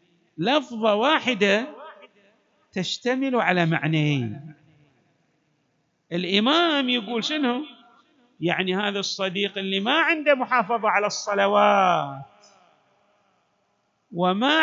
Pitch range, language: 180-275 Hz, Arabic